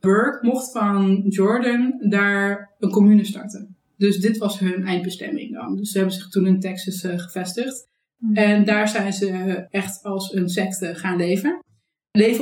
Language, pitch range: Dutch, 180-205 Hz